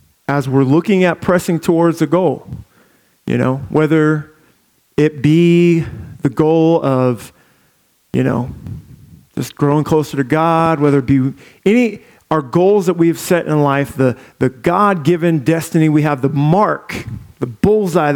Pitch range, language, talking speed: 135-175 Hz, English, 150 wpm